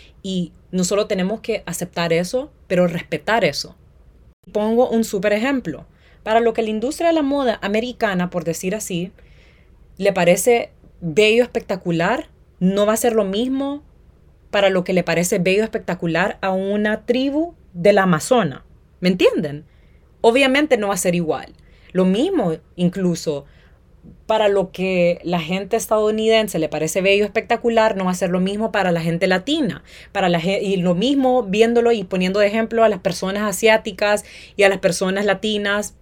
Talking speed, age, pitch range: 165 wpm, 30-49, 170-215 Hz